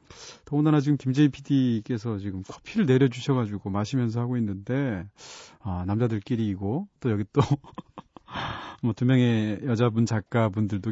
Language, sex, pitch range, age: Korean, male, 105-150 Hz, 40-59